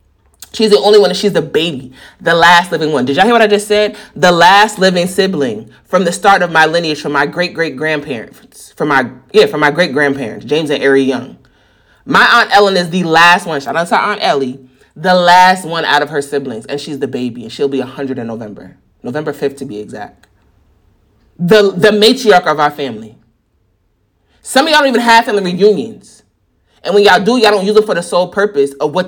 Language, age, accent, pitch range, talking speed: English, 30-49, American, 145-215 Hz, 215 wpm